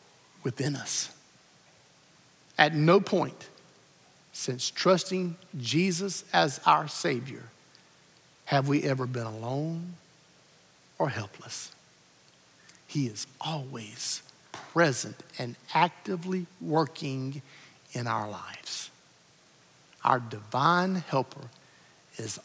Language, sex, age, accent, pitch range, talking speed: English, male, 50-69, American, 130-200 Hz, 85 wpm